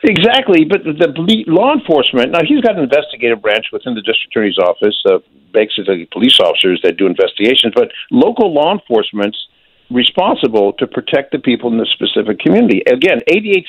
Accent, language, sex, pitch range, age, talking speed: American, English, male, 115-175 Hz, 60-79, 170 wpm